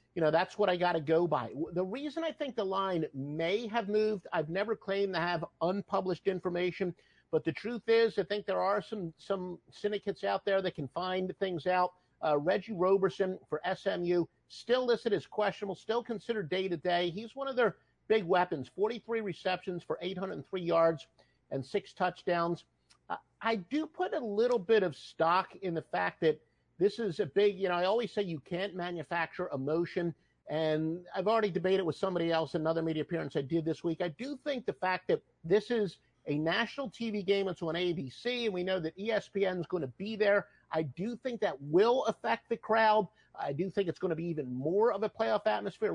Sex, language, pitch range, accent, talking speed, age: male, English, 165-210 Hz, American, 210 wpm, 50-69